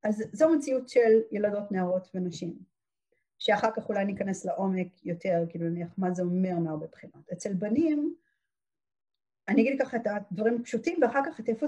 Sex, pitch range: female, 190-255 Hz